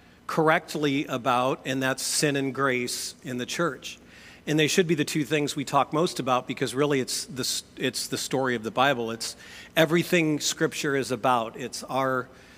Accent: American